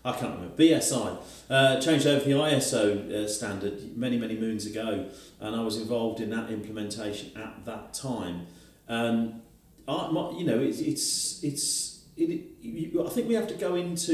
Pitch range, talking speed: 105-150 Hz, 185 wpm